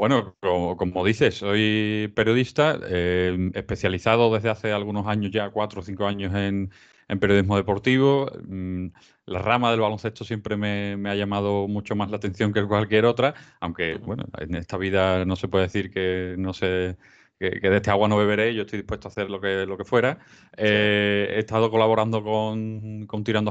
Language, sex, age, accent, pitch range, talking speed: Spanish, male, 30-49, Spanish, 95-110 Hz, 185 wpm